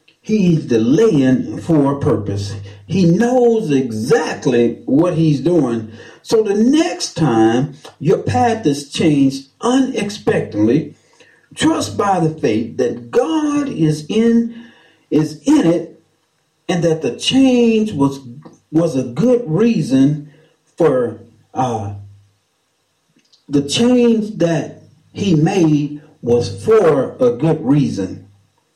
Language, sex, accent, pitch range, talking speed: English, male, American, 140-195 Hz, 110 wpm